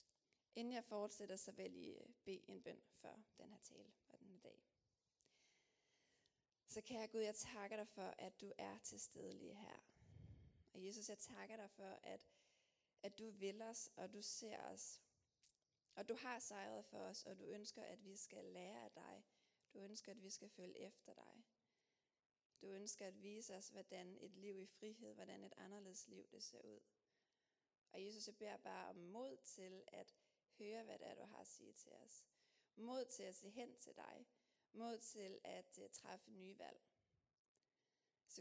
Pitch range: 195-230 Hz